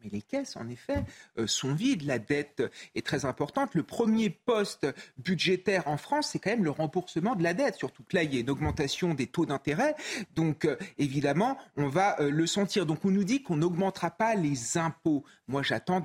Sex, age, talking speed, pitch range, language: male, 40-59, 215 wpm, 150-205 Hz, French